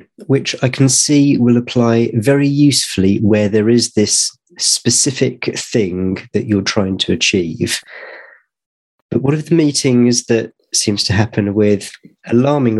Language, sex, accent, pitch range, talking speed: English, male, British, 95-120 Hz, 140 wpm